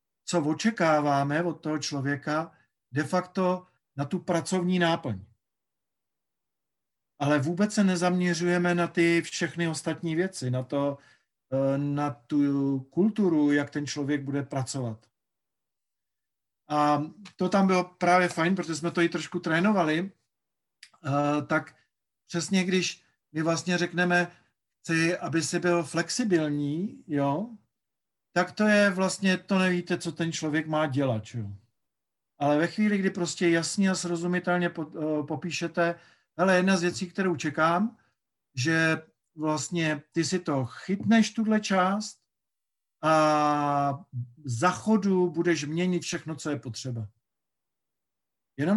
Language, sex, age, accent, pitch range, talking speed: Czech, male, 50-69, native, 150-180 Hz, 120 wpm